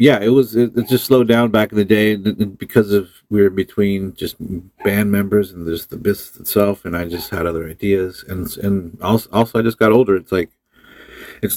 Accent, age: American, 40-59